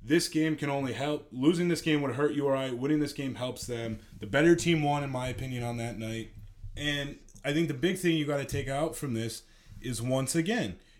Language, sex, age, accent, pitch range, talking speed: English, male, 30-49, American, 115-175 Hz, 230 wpm